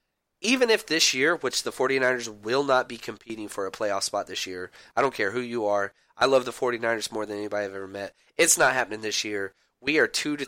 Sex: male